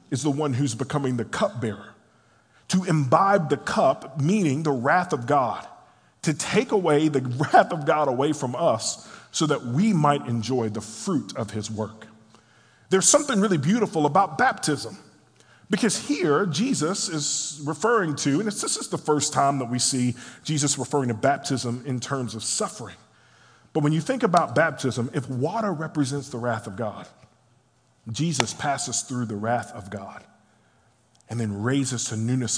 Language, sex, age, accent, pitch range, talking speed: English, male, 40-59, American, 120-175 Hz, 170 wpm